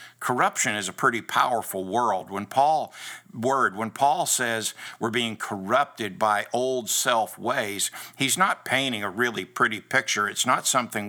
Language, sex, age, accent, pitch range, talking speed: English, male, 60-79, American, 105-125 Hz, 150 wpm